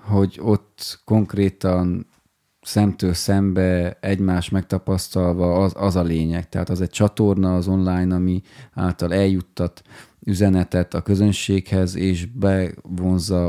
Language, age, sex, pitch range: Hungarian, 20-39, male, 90-100 Hz